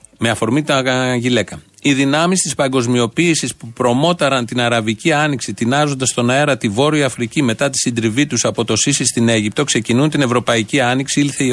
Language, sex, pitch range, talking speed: Greek, male, 120-165 Hz, 175 wpm